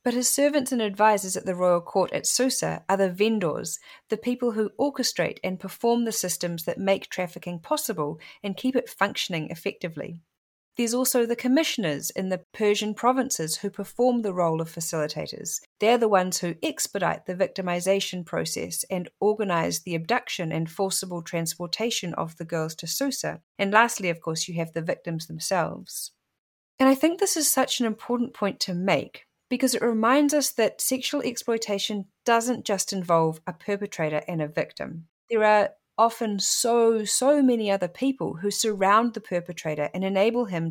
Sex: female